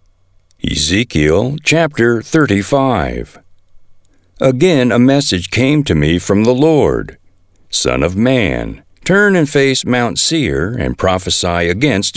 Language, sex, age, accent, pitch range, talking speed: English, male, 60-79, American, 95-140 Hz, 115 wpm